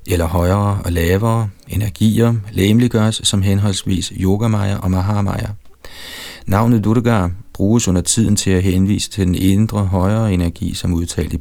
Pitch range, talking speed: 90-105 Hz, 140 wpm